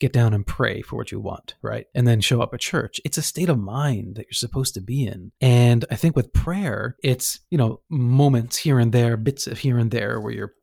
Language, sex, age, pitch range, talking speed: English, male, 30-49, 110-135 Hz, 255 wpm